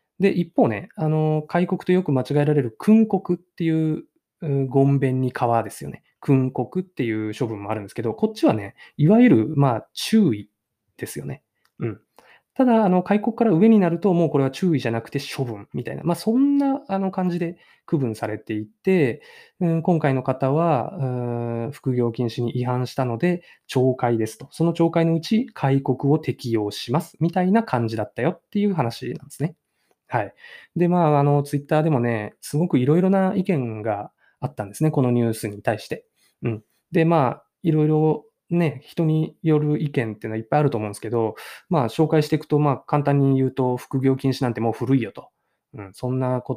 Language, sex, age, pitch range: Japanese, male, 20-39, 120-170 Hz